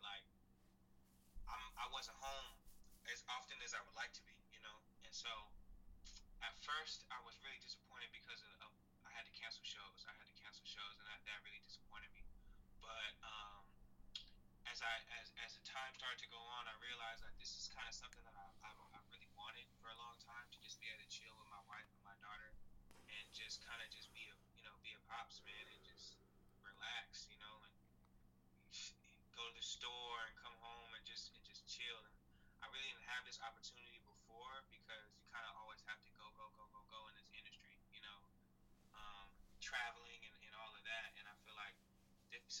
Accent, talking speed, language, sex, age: American, 210 wpm, English, male, 20-39